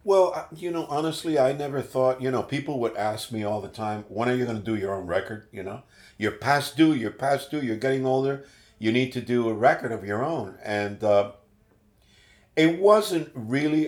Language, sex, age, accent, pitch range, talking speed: English, male, 50-69, American, 100-125 Hz, 215 wpm